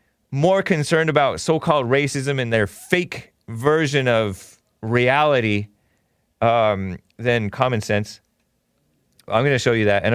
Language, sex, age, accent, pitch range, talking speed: English, male, 30-49, American, 100-130 Hz, 130 wpm